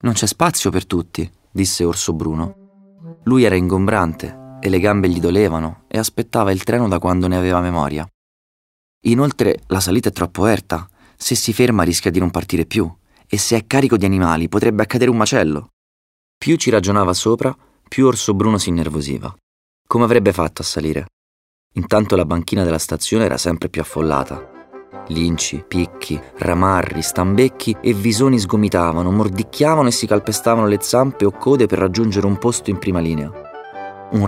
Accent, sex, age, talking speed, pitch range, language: native, male, 30-49, 165 wpm, 85-115 Hz, Italian